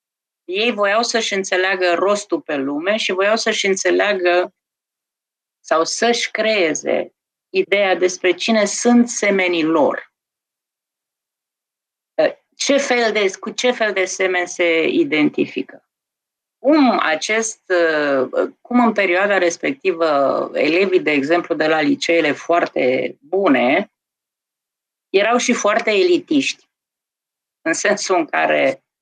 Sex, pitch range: female, 175-225 Hz